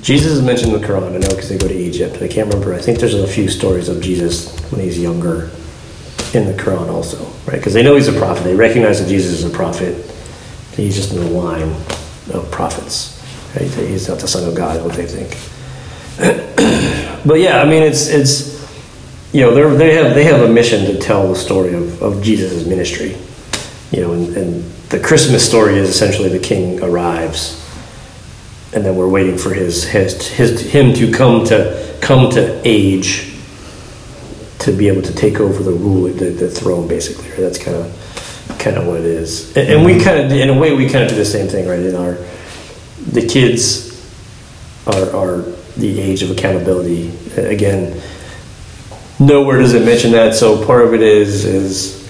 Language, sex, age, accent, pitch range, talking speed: English, male, 40-59, American, 90-115 Hz, 190 wpm